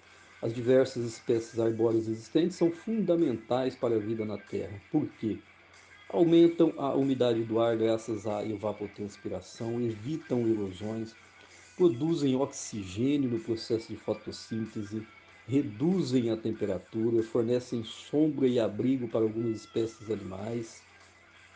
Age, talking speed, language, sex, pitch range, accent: 50-69, 115 wpm, Portuguese, male, 110-135 Hz, Brazilian